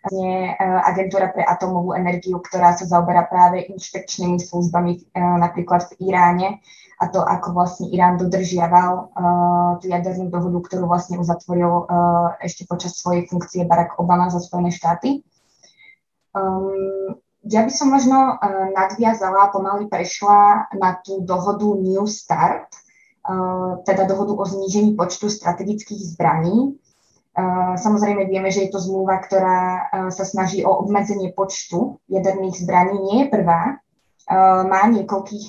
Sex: female